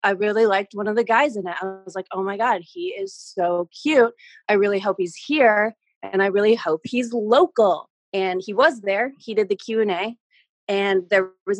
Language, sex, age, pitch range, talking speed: English, female, 30-49, 190-235 Hz, 220 wpm